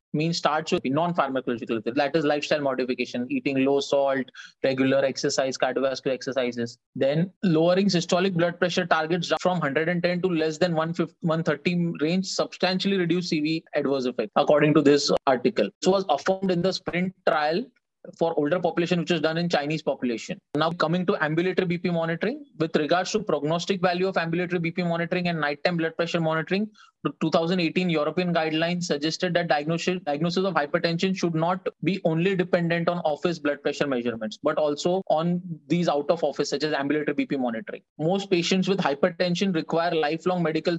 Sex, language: male, English